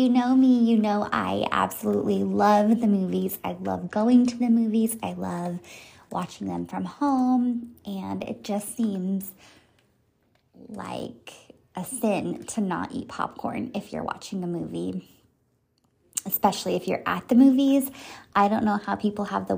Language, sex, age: English, female, 20-39